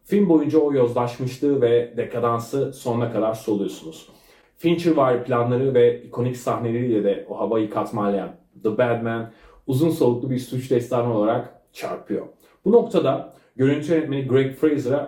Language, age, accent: Turkish, 30-49, native